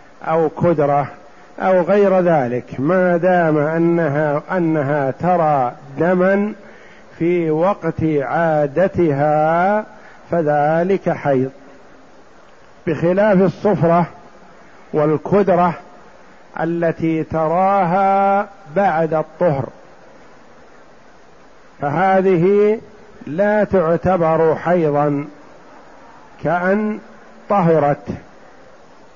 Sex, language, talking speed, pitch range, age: male, Arabic, 60 wpm, 155-190 Hz, 50-69